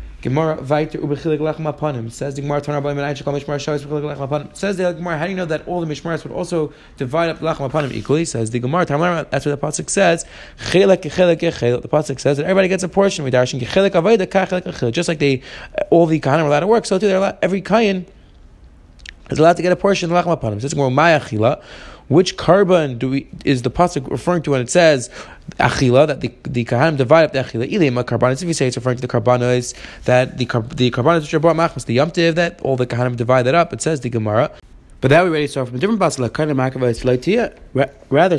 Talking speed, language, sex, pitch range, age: 200 wpm, English, male, 125-170 Hz, 20-39